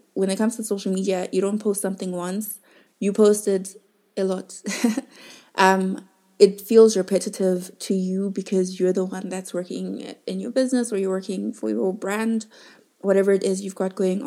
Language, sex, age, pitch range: English, female, 20-39, 185-205 Hz